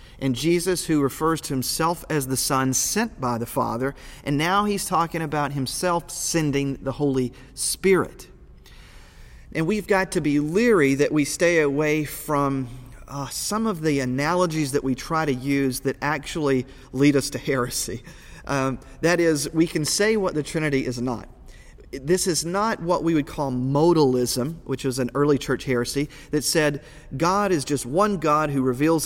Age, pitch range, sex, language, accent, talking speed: 40-59, 130-170 Hz, male, English, American, 175 wpm